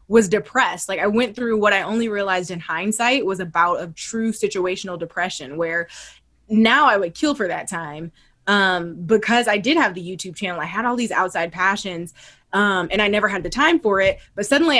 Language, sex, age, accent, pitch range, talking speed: English, female, 20-39, American, 185-230 Hz, 205 wpm